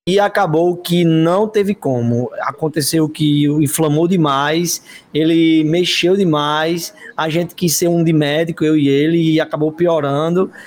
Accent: Brazilian